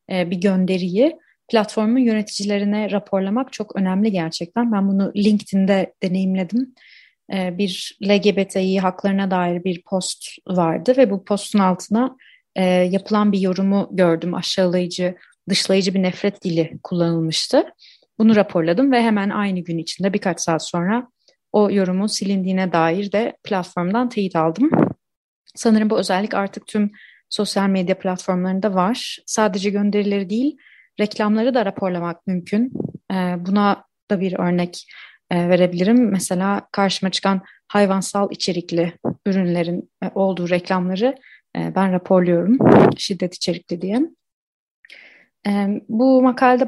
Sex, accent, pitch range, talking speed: female, native, 185-220 Hz, 110 wpm